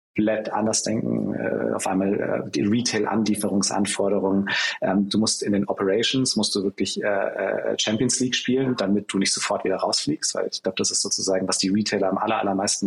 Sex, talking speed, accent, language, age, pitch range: male, 185 wpm, German, German, 30-49, 95-110 Hz